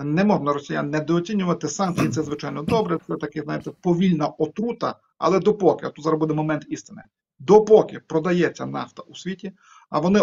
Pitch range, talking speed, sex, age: 150-195 Hz, 165 wpm, male, 40-59